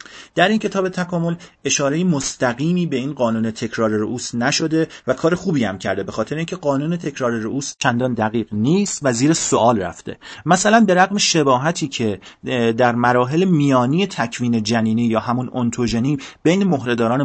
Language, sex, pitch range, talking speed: Persian, male, 115-155 Hz, 155 wpm